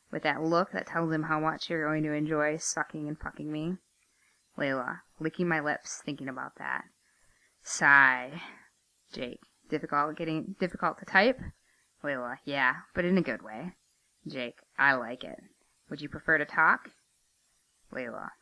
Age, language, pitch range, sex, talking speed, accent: 20-39, English, 145-180 Hz, female, 155 wpm, American